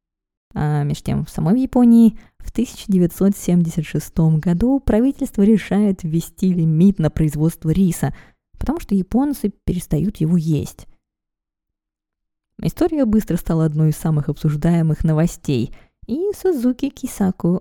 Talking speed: 110 wpm